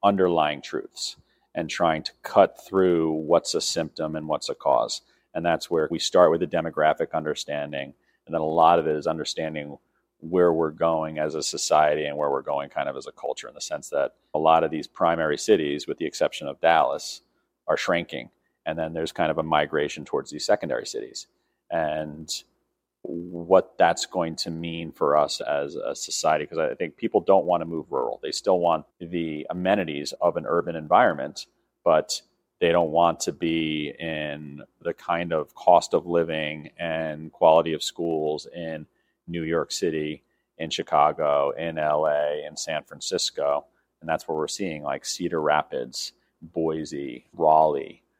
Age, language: 40-59, English